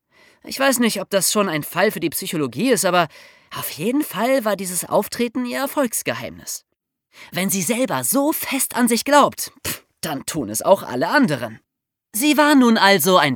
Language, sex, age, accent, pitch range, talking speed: German, male, 30-49, German, 155-245 Hz, 180 wpm